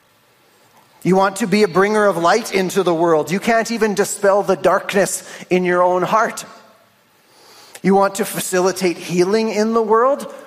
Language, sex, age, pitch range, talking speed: English, male, 40-59, 180-270 Hz, 165 wpm